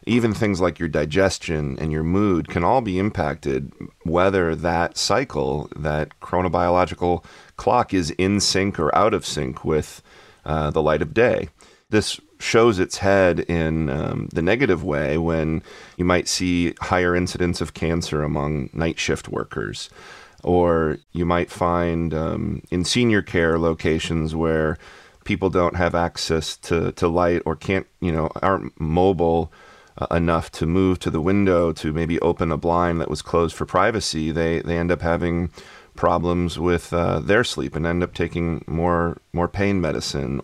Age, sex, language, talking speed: 40-59, male, English, 160 wpm